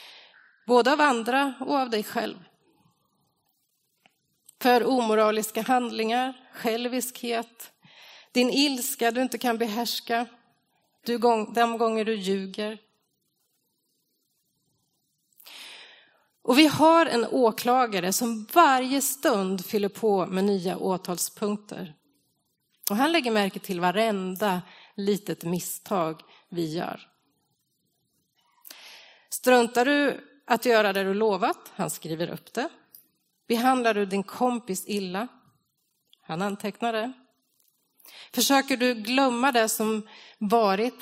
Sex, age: female, 30-49